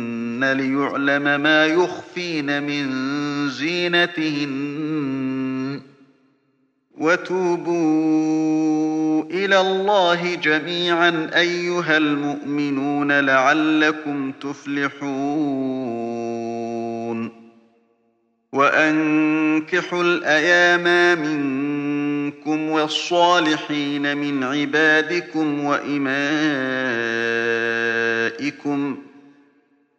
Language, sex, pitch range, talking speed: Arabic, male, 140-155 Hz, 40 wpm